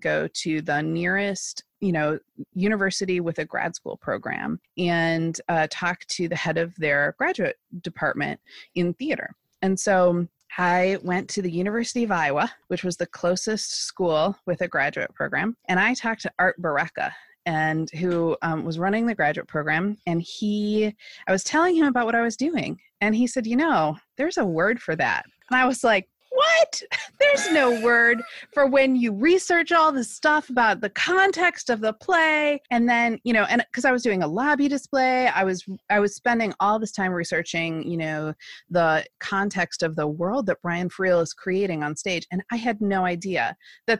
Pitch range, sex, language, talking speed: 170-235 Hz, female, English, 190 wpm